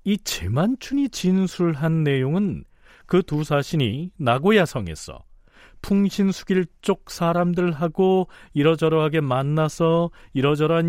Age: 40-59